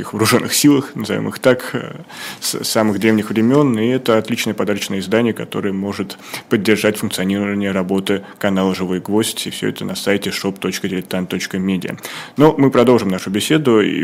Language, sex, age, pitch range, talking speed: Russian, male, 20-39, 100-115 Hz, 145 wpm